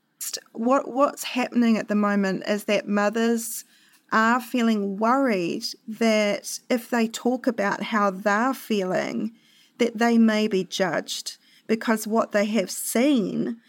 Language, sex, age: English, female, 30-49